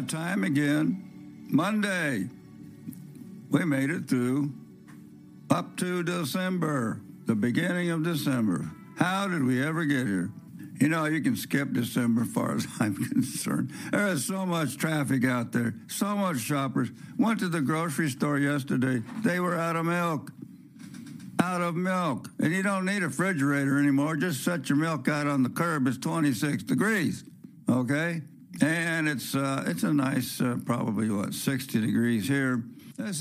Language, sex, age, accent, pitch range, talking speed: English, male, 60-79, American, 130-175 Hz, 155 wpm